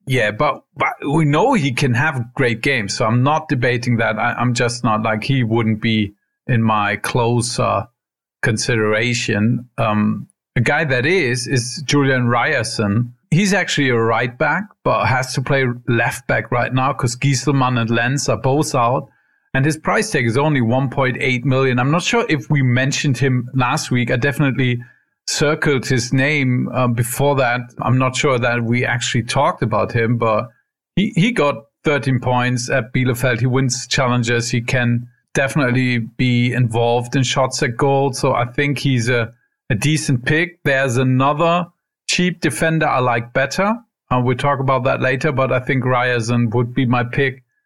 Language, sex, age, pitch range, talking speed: English, male, 40-59, 120-140 Hz, 175 wpm